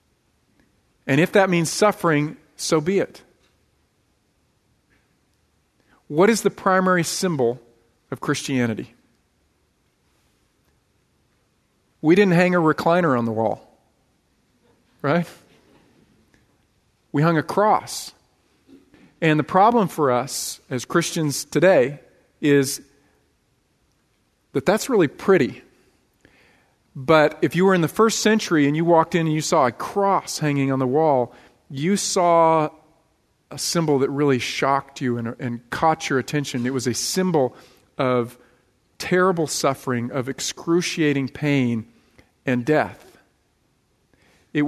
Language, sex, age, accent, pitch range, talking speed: English, male, 40-59, American, 130-170 Hz, 120 wpm